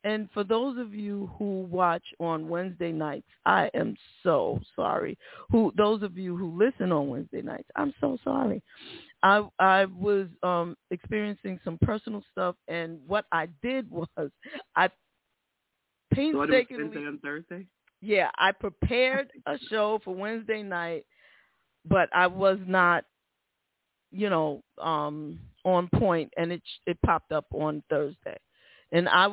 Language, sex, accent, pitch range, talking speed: English, female, American, 170-215 Hz, 145 wpm